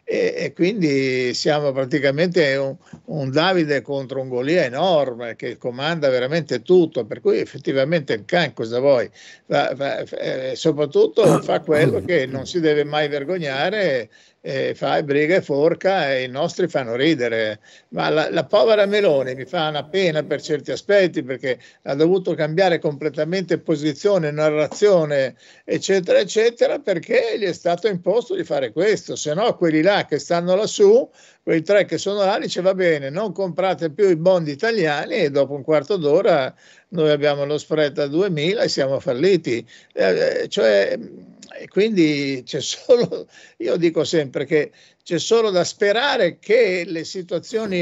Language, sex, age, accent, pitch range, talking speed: Italian, male, 50-69, native, 150-200 Hz, 155 wpm